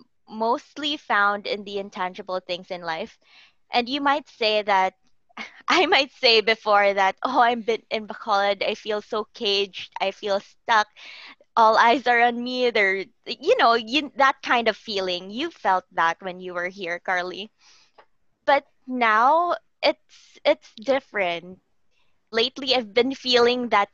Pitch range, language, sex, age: 190-235 Hz, English, female, 20-39